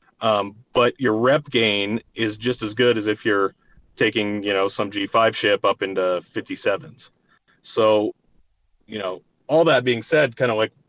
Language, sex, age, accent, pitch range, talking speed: English, male, 30-49, American, 105-130 Hz, 175 wpm